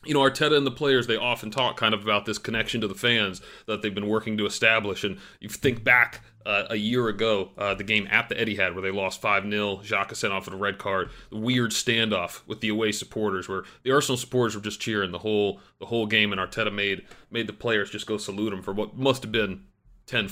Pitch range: 110-135 Hz